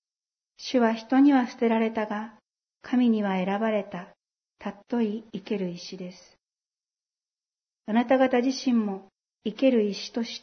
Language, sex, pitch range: Japanese, female, 200-235 Hz